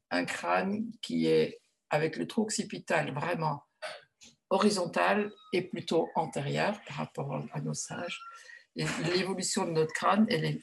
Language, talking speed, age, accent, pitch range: French, 135 wpm, 60-79, French, 155-225 Hz